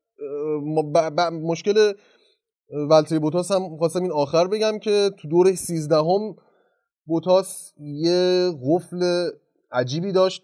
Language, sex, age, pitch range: Persian, male, 30-49, 140-185 Hz